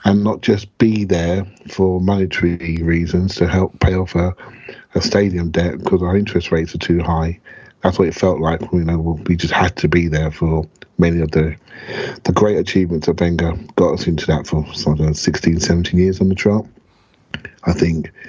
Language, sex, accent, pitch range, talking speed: English, male, British, 85-95 Hz, 195 wpm